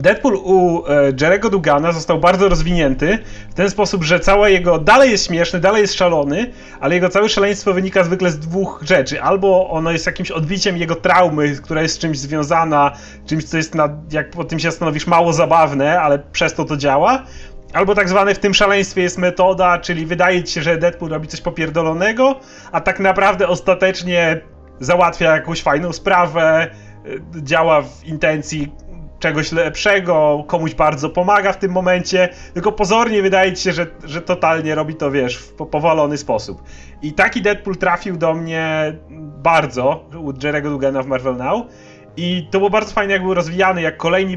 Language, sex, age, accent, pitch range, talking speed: Polish, male, 30-49, native, 155-190 Hz, 175 wpm